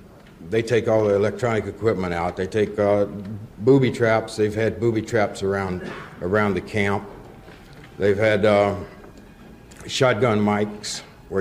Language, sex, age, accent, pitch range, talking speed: English, male, 60-79, American, 95-110 Hz, 135 wpm